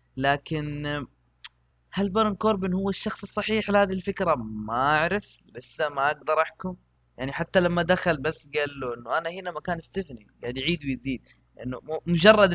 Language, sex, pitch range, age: Arabic, female, 135-190 Hz, 20-39